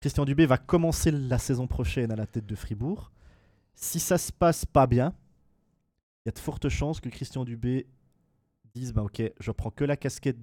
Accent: French